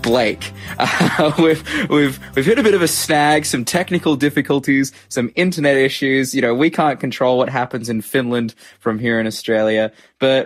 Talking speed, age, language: 170 wpm, 20-39, English